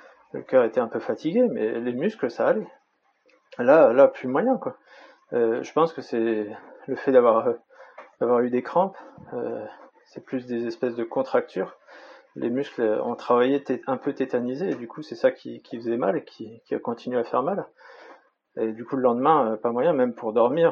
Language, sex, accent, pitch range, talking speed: French, male, French, 120-150 Hz, 210 wpm